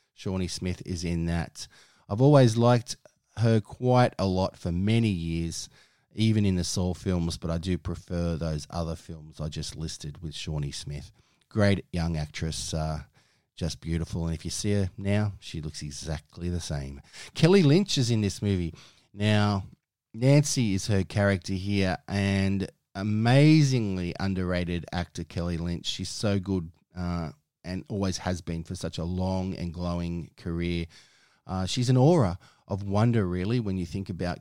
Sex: male